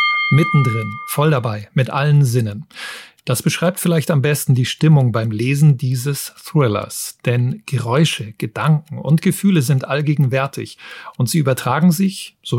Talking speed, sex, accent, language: 140 wpm, male, German, German